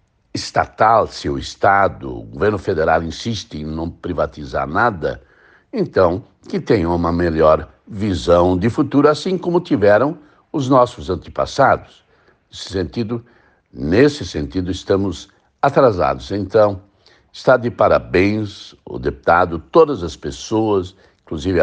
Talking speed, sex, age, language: 115 wpm, male, 60-79, Portuguese